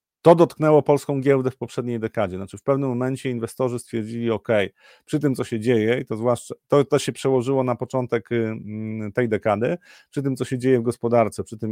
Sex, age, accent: male, 30-49, native